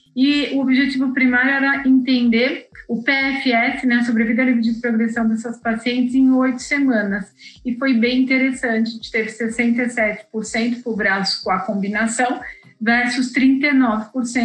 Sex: female